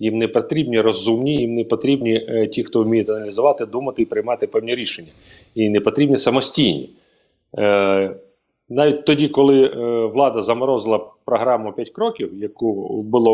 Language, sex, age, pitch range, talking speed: Ukrainian, male, 30-49, 115-155 Hz, 150 wpm